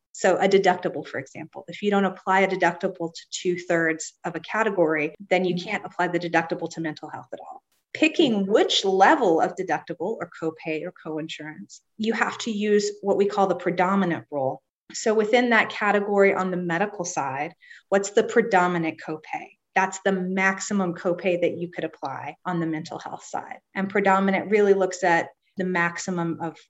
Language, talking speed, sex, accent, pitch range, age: English, 180 wpm, female, American, 170-210 Hz, 30-49